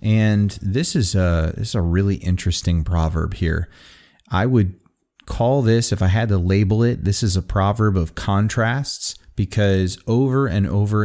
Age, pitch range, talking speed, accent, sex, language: 30-49, 90-110 Hz, 170 wpm, American, male, English